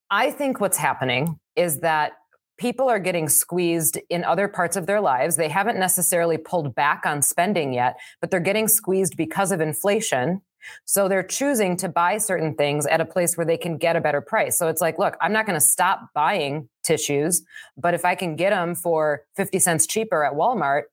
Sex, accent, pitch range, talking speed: female, American, 145-180 Hz, 205 wpm